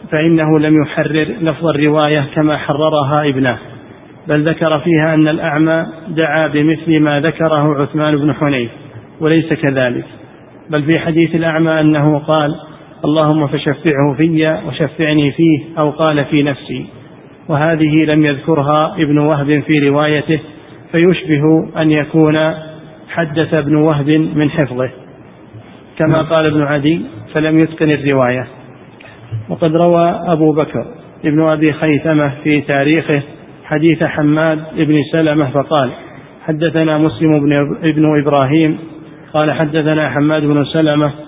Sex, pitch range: male, 150-160 Hz